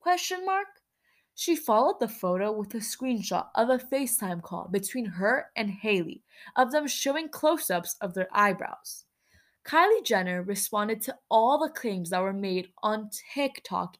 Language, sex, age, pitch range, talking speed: English, female, 10-29, 200-290 Hz, 155 wpm